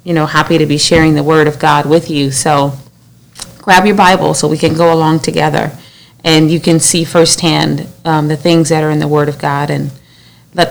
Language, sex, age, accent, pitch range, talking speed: English, female, 30-49, American, 145-165 Hz, 220 wpm